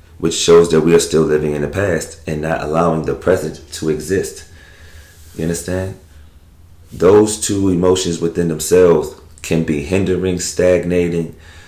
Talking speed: 145 wpm